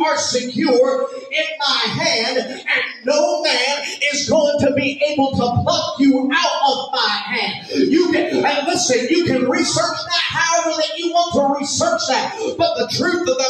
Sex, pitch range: male, 270-335 Hz